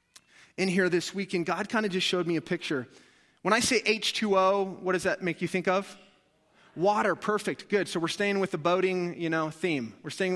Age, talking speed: 30-49, 215 wpm